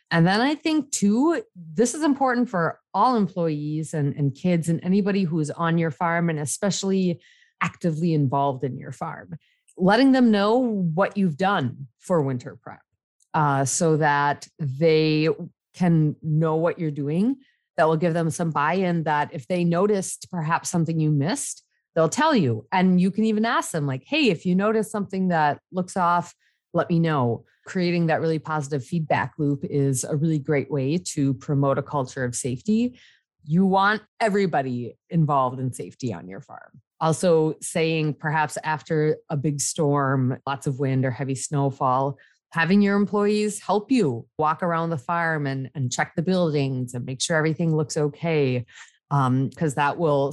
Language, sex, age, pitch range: English, female, 30-49, 145-185 Hz